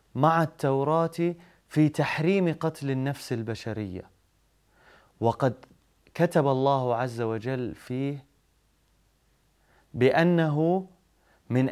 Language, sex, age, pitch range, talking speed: Arabic, male, 30-49, 110-155 Hz, 75 wpm